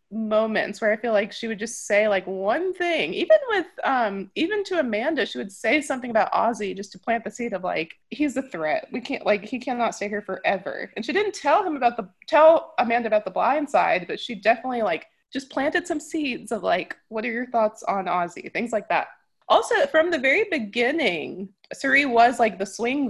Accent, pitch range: American, 205-295 Hz